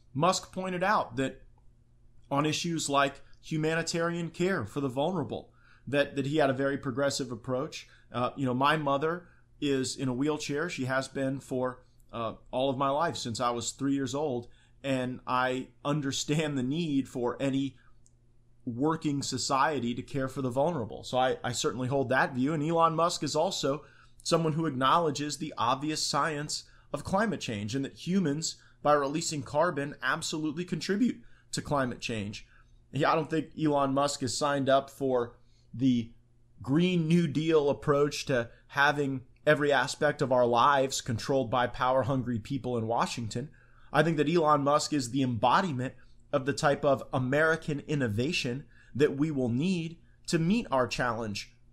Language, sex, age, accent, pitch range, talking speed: English, male, 30-49, American, 120-150 Hz, 160 wpm